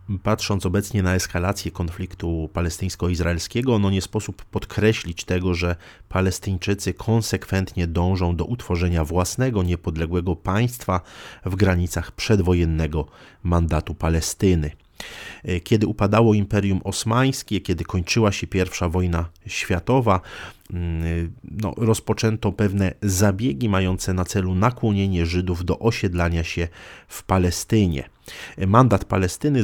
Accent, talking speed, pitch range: native, 100 wpm, 85-105 Hz